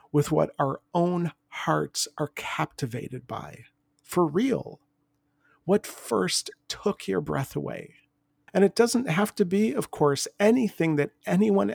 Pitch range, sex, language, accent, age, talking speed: 145-190 Hz, male, English, American, 50-69, 140 wpm